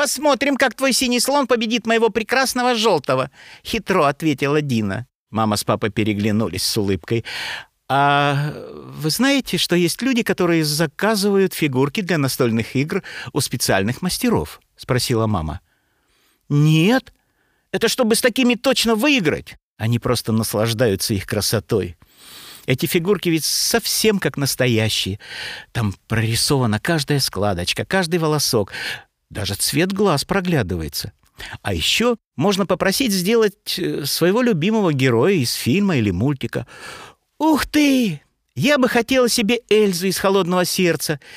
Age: 50-69